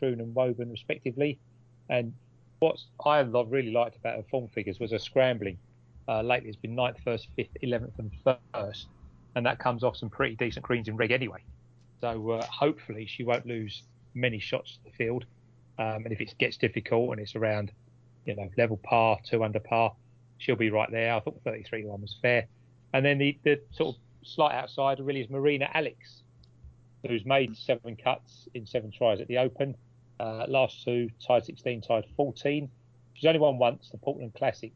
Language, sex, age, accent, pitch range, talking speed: English, male, 30-49, British, 115-130 Hz, 190 wpm